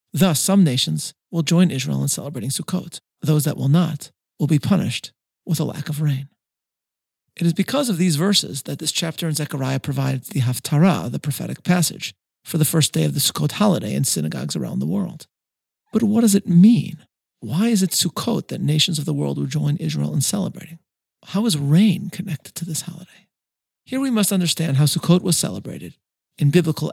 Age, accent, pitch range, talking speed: 40-59, American, 145-180 Hz, 195 wpm